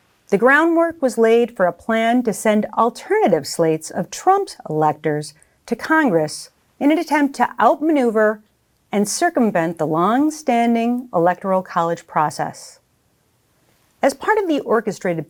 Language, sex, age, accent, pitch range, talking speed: English, female, 40-59, American, 175-275 Hz, 130 wpm